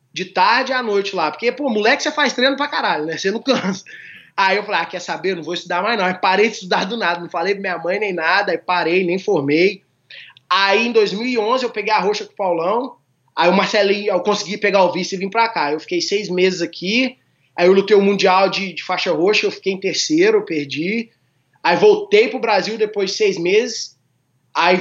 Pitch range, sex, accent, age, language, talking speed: 180-225 Hz, male, Brazilian, 20-39, Portuguese, 235 wpm